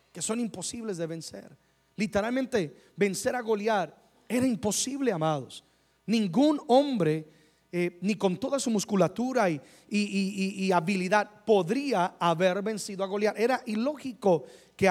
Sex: male